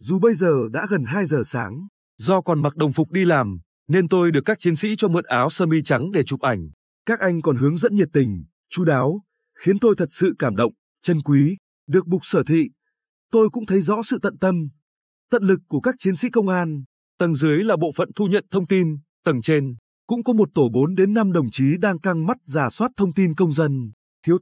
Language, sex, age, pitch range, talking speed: Vietnamese, male, 20-39, 145-200 Hz, 230 wpm